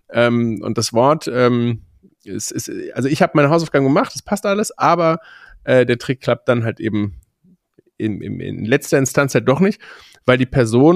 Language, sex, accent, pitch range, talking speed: German, male, German, 115-140 Hz, 190 wpm